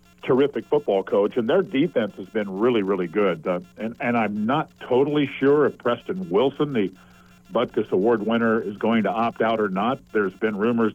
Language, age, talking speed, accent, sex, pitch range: English, 50-69, 190 wpm, American, male, 100-120 Hz